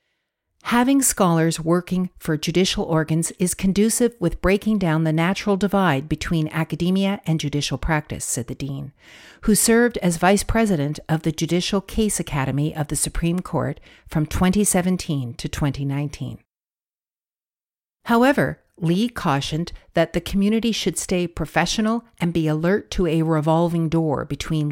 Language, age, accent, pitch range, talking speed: English, 60-79, American, 155-195 Hz, 140 wpm